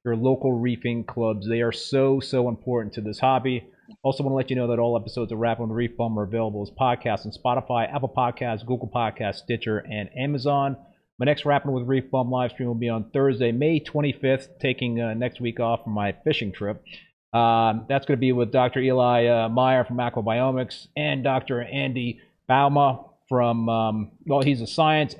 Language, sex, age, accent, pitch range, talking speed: English, male, 30-49, American, 120-140 Hz, 195 wpm